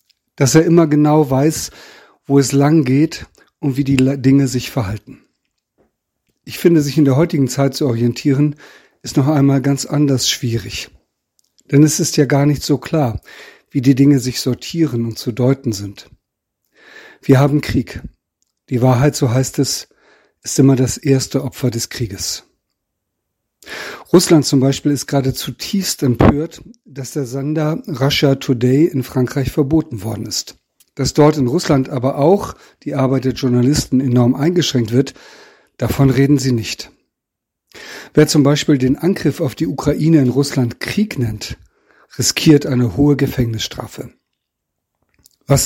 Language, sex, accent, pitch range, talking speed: German, male, German, 130-150 Hz, 150 wpm